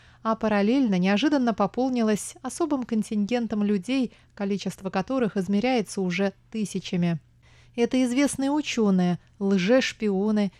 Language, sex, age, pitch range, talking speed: Russian, female, 20-39, 190-235 Hz, 90 wpm